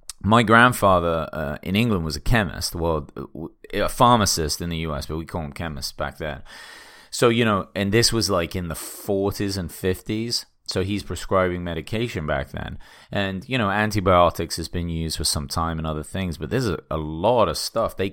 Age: 30-49